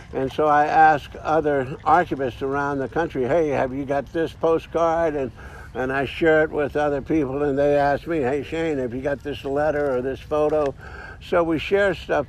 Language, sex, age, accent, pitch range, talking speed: English, male, 60-79, American, 125-155 Hz, 200 wpm